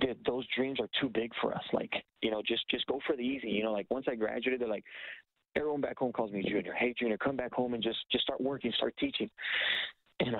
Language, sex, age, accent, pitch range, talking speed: English, male, 30-49, American, 105-120 Hz, 250 wpm